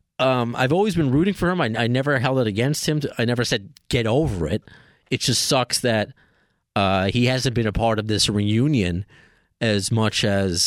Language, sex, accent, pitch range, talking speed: English, male, American, 105-135 Hz, 200 wpm